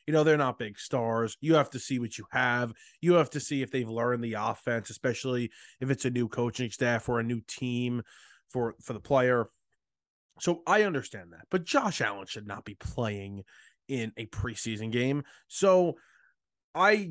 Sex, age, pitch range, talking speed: male, 20-39, 115-140 Hz, 190 wpm